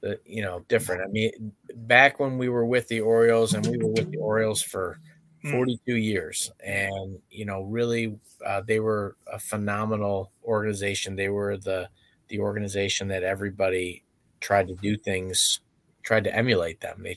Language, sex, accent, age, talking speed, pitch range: English, male, American, 30-49, 170 wpm, 95-115 Hz